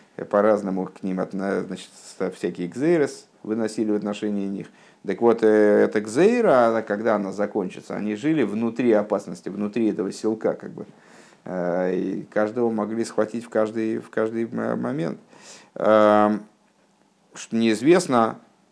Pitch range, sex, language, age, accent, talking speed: 100-115 Hz, male, Russian, 50-69, native, 125 wpm